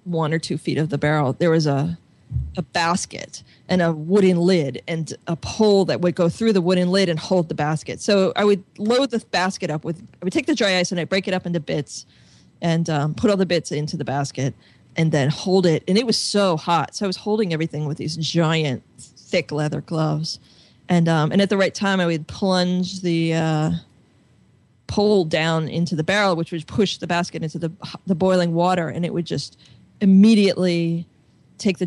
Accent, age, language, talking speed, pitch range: American, 20-39, English, 215 wpm, 155-190 Hz